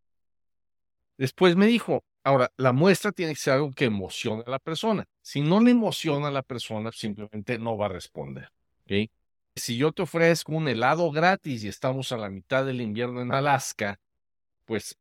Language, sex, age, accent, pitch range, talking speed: Spanish, male, 50-69, Mexican, 95-150 Hz, 180 wpm